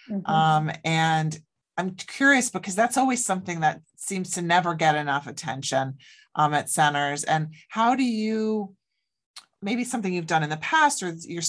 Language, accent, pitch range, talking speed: English, American, 155-205 Hz, 160 wpm